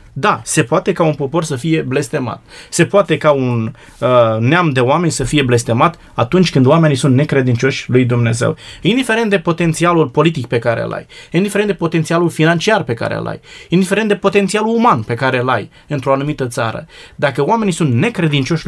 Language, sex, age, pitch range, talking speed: Romanian, male, 20-39, 135-190 Hz, 185 wpm